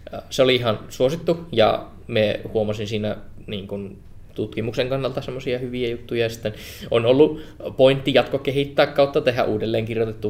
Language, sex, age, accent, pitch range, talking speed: Finnish, male, 20-39, native, 105-110 Hz, 145 wpm